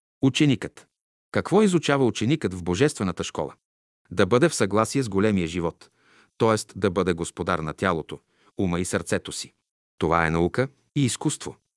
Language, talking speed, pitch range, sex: Bulgarian, 150 wpm, 90-125 Hz, male